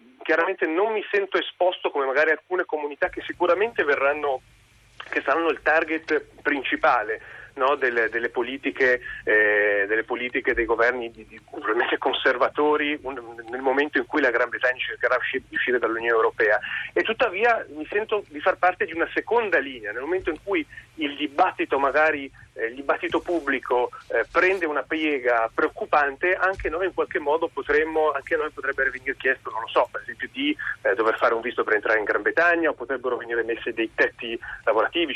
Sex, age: male, 30-49